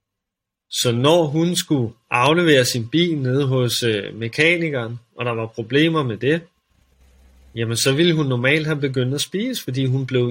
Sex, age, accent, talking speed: male, 30-49, native, 170 wpm